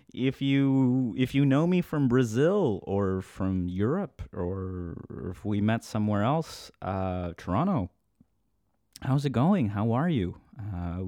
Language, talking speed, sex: English, 140 wpm, male